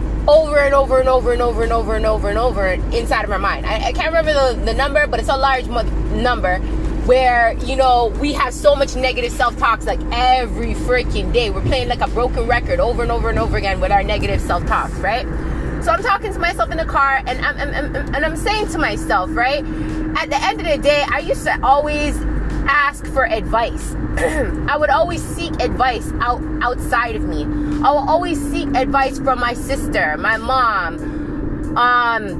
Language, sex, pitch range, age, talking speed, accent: English, female, 215-290 Hz, 20-39, 205 wpm, American